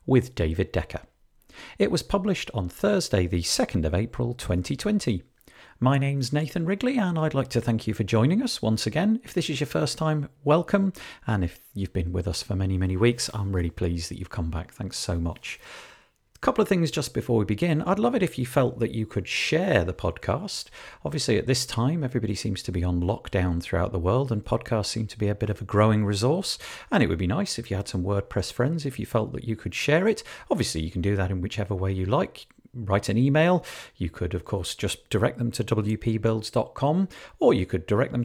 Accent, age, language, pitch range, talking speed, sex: British, 40-59, English, 95-150 Hz, 225 wpm, male